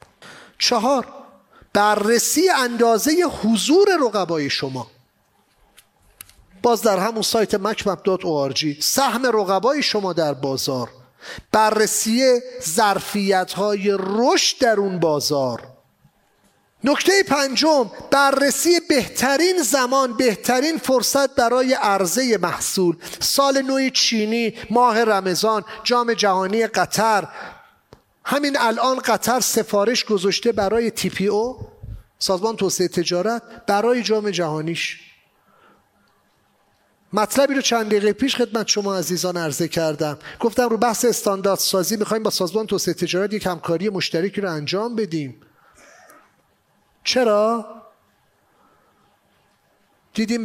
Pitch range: 190-245 Hz